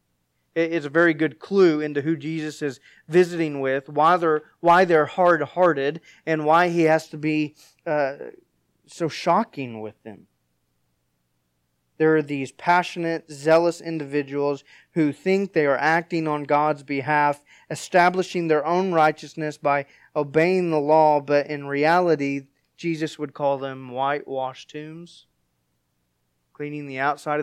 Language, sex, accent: English, male, American